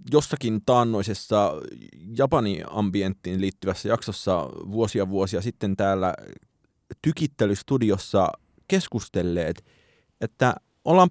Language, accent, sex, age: Finnish, native, male, 30-49